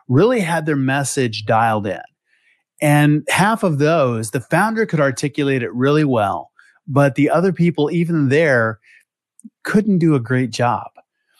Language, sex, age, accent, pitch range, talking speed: English, male, 30-49, American, 130-165 Hz, 145 wpm